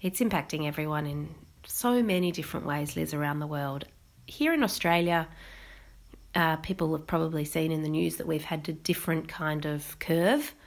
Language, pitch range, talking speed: English, 155-180 Hz, 175 wpm